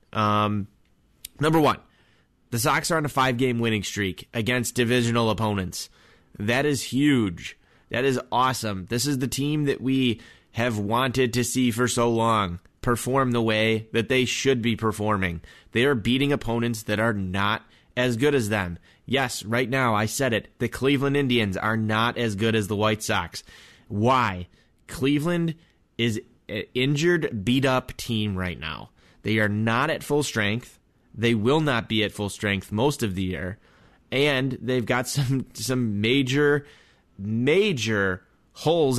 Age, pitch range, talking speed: 20-39, 105-130 Hz, 160 wpm